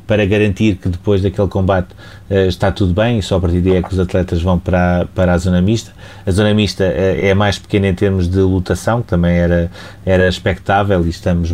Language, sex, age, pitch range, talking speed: Portuguese, male, 30-49, 95-105 Hz, 210 wpm